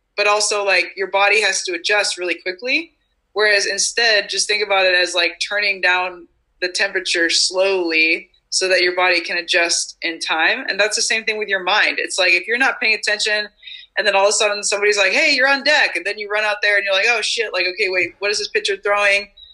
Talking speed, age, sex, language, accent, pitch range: 235 wpm, 20-39, female, English, American, 170-200 Hz